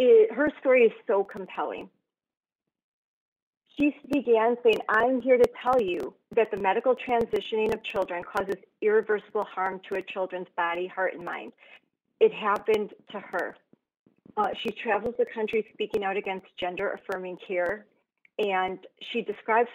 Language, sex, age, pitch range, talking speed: English, female, 40-59, 200-290 Hz, 140 wpm